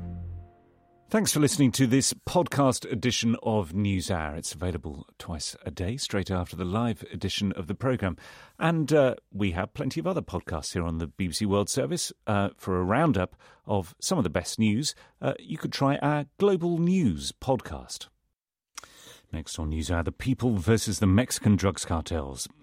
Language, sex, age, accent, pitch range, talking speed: English, male, 40-59, British, 85-125 Hz, 170 wpm